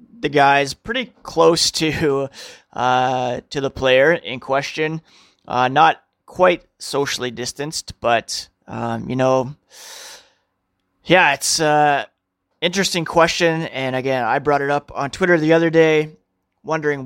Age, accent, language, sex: 20-39, American, English, male